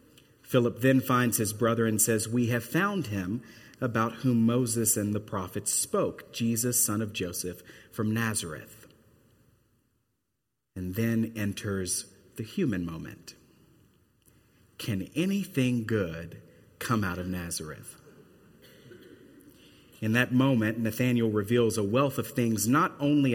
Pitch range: 110-130 Hz